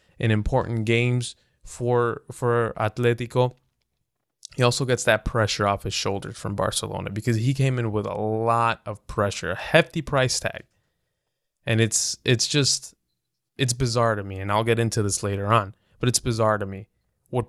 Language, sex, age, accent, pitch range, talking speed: English, male, 20-39, American, 105-130 Hz, 170 wpm